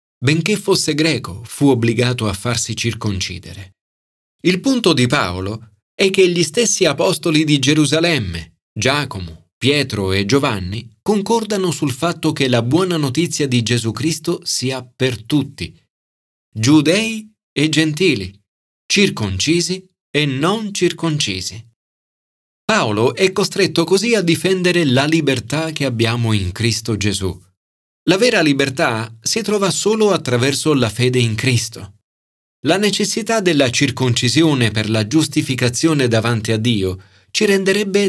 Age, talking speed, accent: 40-59, 125 wpm, native